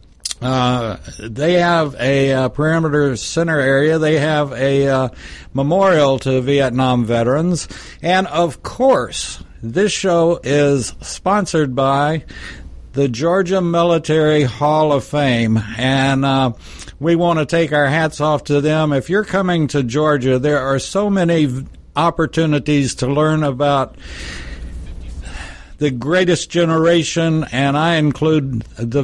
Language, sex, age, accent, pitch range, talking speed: English, male, 60-79, American, 120-155 Hz, 125 wpm